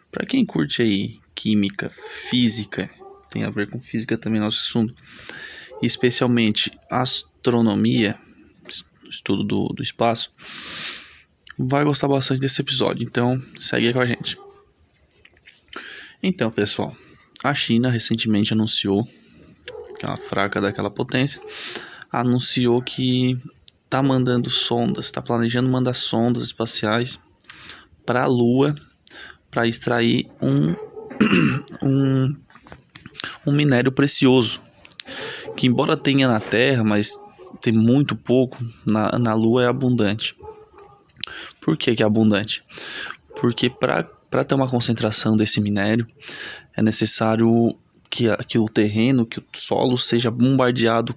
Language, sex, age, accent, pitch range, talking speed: Portuguese, male, 20-39, Brazilian, 110-130 Hz, 115 wpm